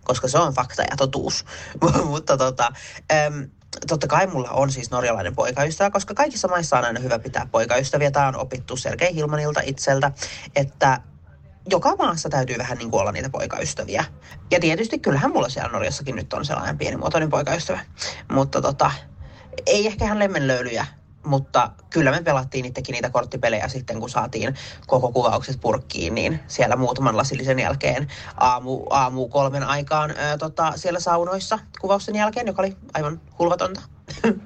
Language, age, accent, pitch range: Finnish, 30-49, native, 130-185 Hz